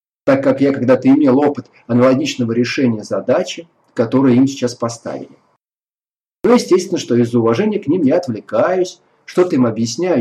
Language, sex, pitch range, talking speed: Russian, male, 120-165 Hz, 145 wpm